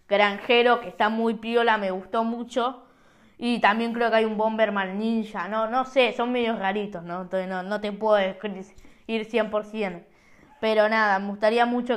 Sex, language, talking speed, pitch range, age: female, Spanish, 175 wpm, 205-260 Hz, 20-39